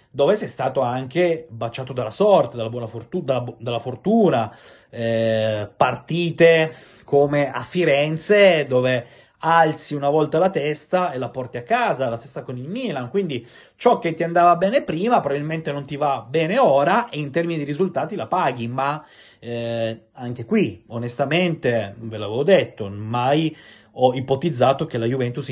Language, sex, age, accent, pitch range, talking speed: Italian, male, 30-49, native, 115-150 Hz, 165 wpm